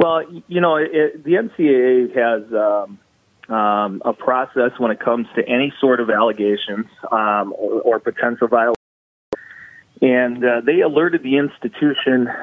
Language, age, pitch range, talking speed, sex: English, 30-49, 110-130 Hz, 150 wpm, male